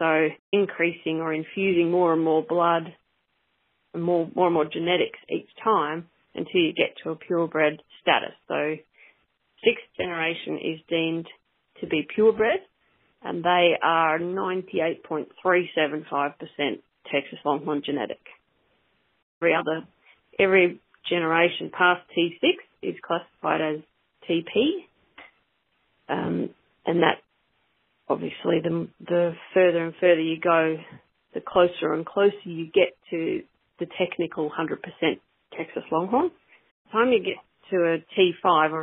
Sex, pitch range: female, 155-185 Hz